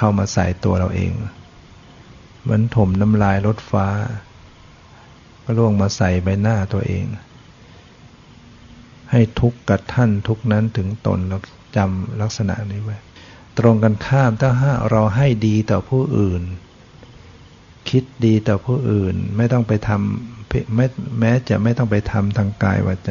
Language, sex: Thai, male